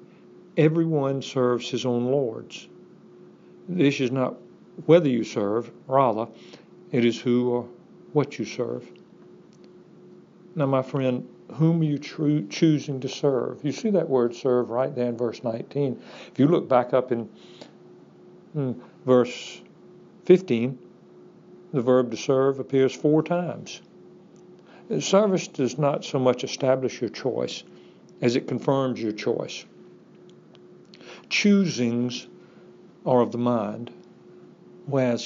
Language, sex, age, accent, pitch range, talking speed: English, male, 60-79, American, 125-175 Hz, 125 wpm